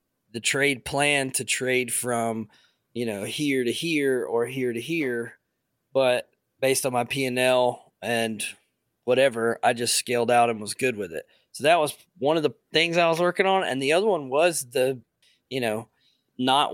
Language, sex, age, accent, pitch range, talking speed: English, male, 20-39, American, 120-135 Hz, 185 wpm